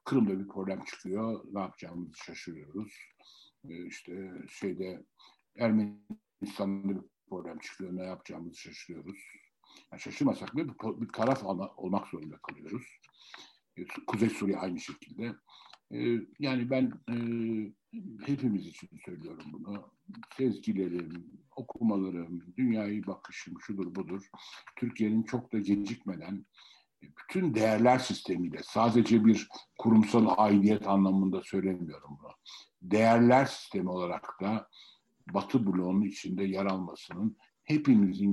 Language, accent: Turkish, native